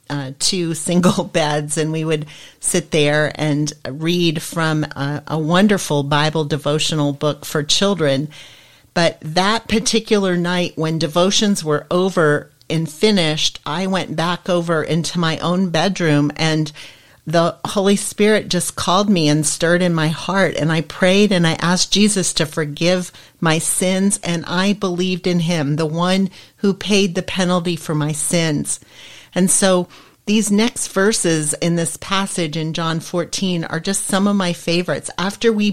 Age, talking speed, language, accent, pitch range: 40-59, 160 wpm, English, American, 155-195 Hz